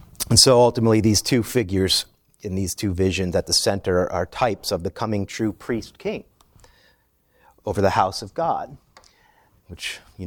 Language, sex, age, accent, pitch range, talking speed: English, male, 40-59, American, 100-140 Hz, 160 wpm